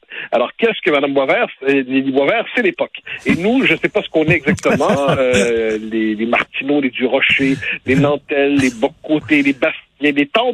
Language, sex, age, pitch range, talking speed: French, male, 60-79, 140-220 Hz, 195 wpm